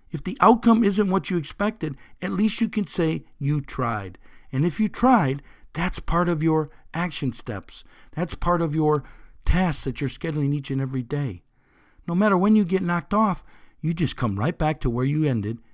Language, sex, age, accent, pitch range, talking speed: English, male, 50-69, American, 130-175 Hz, 200 wpm